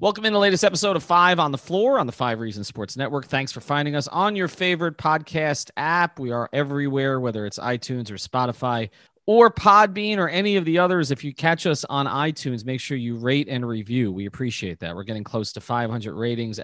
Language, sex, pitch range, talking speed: English, male, 120-170 Hz, 220 wpm